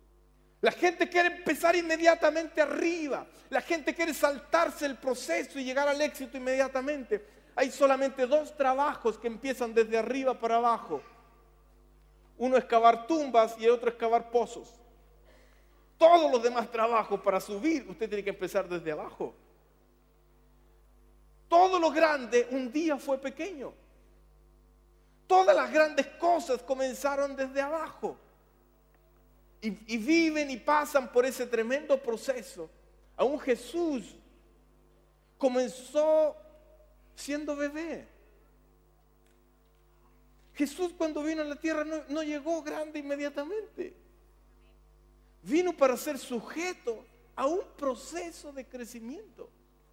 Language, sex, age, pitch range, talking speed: Spanish, male, 40-59, 230-310 Hz, 115 wpm